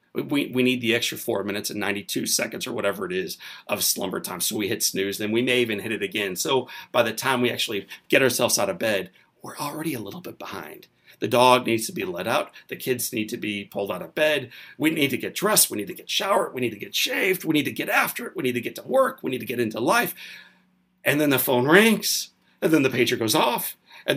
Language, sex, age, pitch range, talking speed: English, male, 40-59, 120-190 Hz, 265 wpm